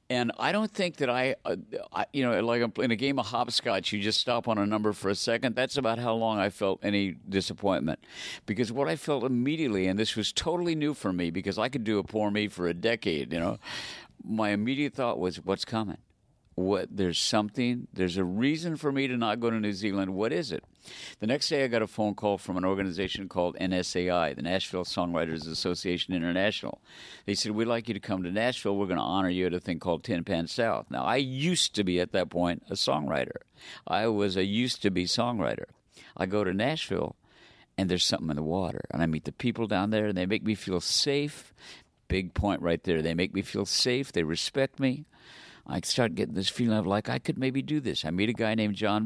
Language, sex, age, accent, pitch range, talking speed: English, male, 50-69, American, 90-120 Hz, 230 wpm